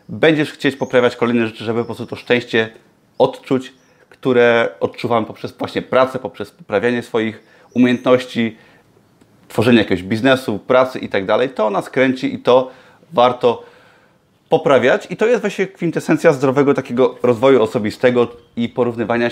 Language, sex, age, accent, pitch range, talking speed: Polish, male, 30-49, native, 115-140 Hz, 140 wpm